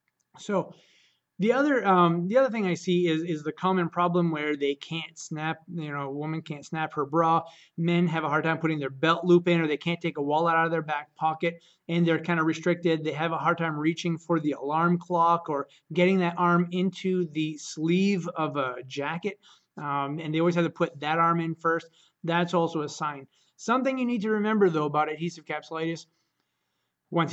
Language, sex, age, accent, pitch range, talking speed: English, male, 30-49, American, 155-175 Hz, 215 wpm